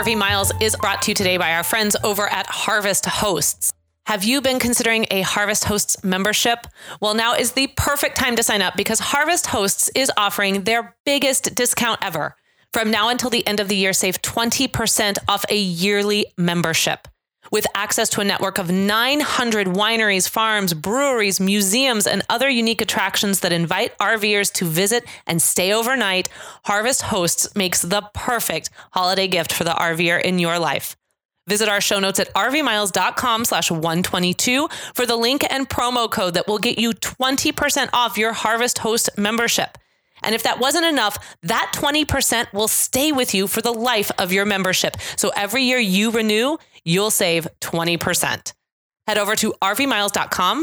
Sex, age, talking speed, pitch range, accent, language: female, 30-49, 170 wpm, 185-240 Hz, American, English